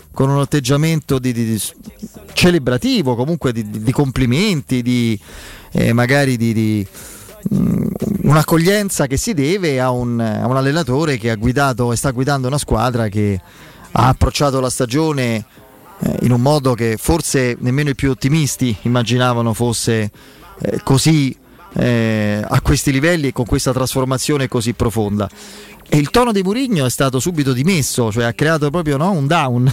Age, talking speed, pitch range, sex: 30-49, 155 wpm, 120-150 Hz, male